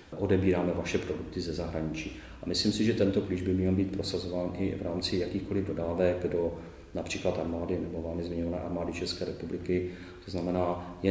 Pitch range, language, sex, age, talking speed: 85-90 Hz, Czech, male, 30-49, 175 wpm